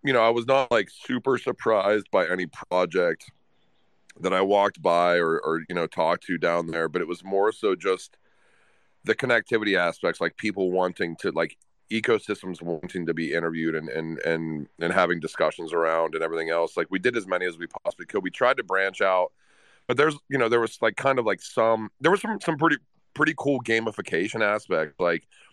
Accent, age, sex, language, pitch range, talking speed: American, 30-49, male, English, 85-135 Hz, 205 wpm